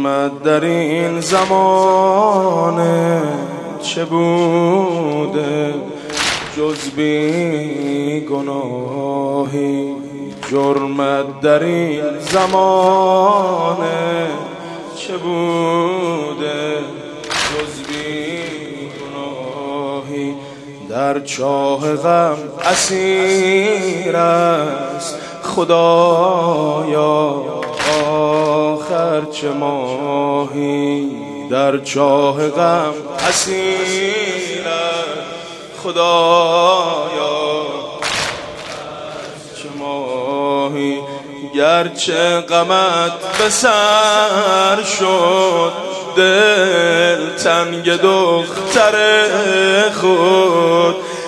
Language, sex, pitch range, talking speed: Persian, male, 145-185 Hz, 45 wpm